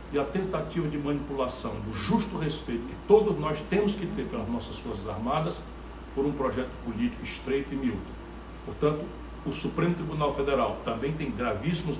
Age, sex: 60-79, male